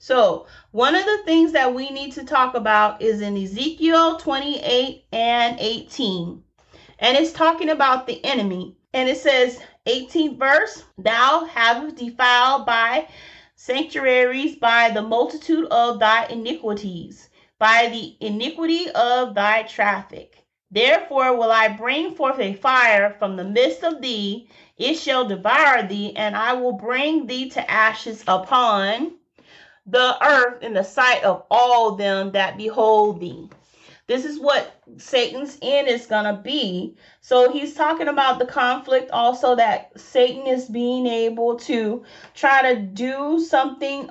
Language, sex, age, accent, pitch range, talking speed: English, female, 30-49, American, 220-275 Hz, 145 wpm